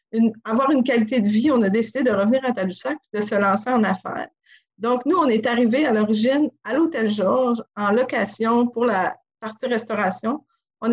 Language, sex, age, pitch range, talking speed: French, female, 50-69, 200-245 Hz, 200 wpm